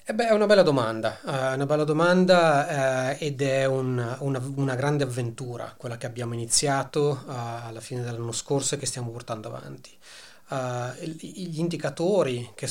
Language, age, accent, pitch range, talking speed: Italian, 30-49, native, 120-140 Hz, 170 wpm